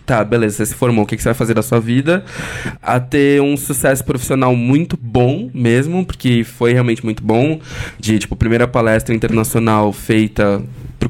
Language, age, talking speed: Portuguese, 20-39, 180 wpm